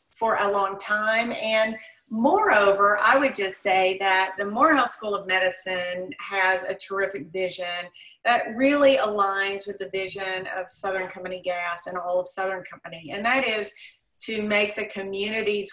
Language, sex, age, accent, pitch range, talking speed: English, female, 40-59, American, 195-215 Hz, 160 wpm